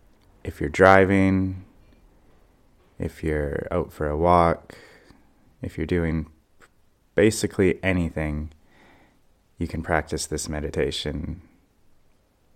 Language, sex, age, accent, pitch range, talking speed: English, male, 20-39, American, 80-100 Hz, 90 wpm